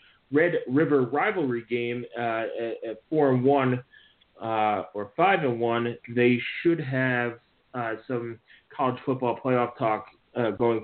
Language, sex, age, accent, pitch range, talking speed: English, male, 30-49, American, 115-135 Hz, 135 wpm